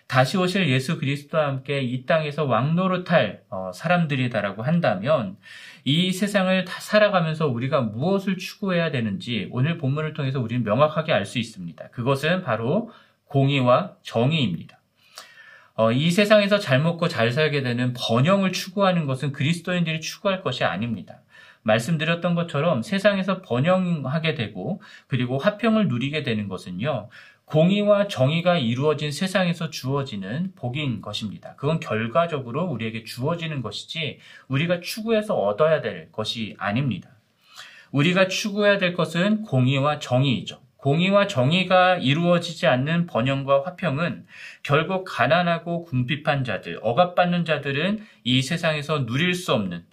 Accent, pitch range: native, 130-180 Hz